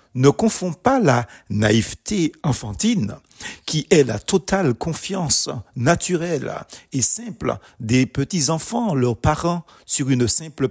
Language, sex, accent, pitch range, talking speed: French, male, French, 120-175 Hz, 120 wpm